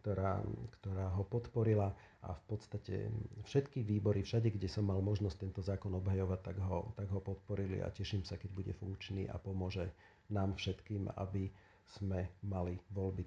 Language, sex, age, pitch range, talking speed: Slovak, male, 50-69, 95-110 Hz, 165 wpm